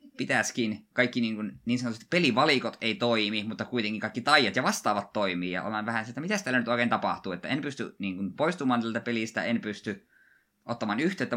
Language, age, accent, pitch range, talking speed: Finnish, 20-39, native, 100-130 Hz, 200 wpm